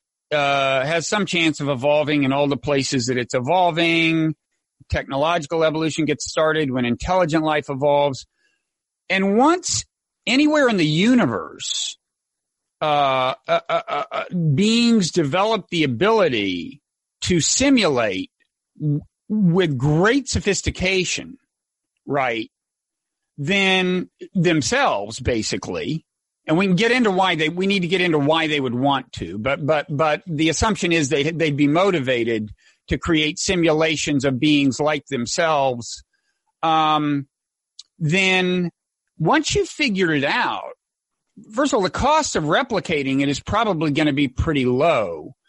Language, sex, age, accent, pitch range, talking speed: English, male, 50-69, American, 145-205 Hz, 135 wpm